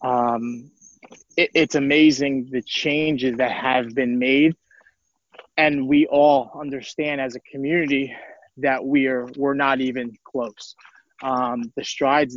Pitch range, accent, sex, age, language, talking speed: 130-150 Hz, American, male, 20-39, English, 115 wpm